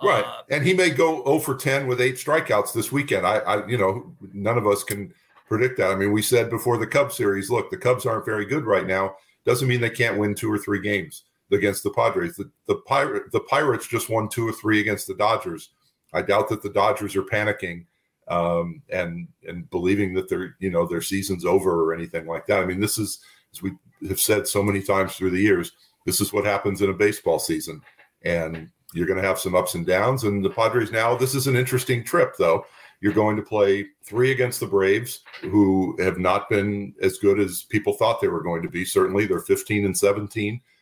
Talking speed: 225 wpm